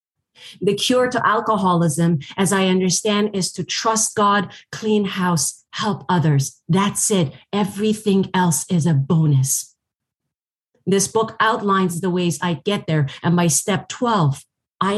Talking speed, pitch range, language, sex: 140 wpm, 170-215 Hz, English, female